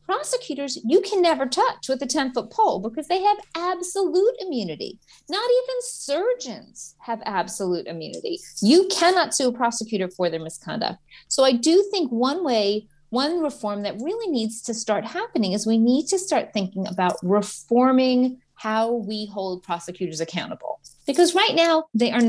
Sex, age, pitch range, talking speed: female, 40-59, 195-270 Hz, 165 wpm